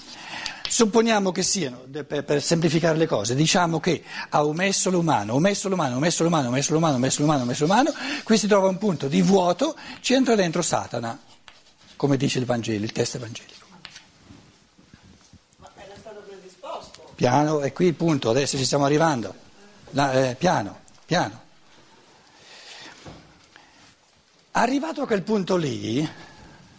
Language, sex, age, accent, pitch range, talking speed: Italian, male, 60-79, native, 150-230 Hz, 150 wpm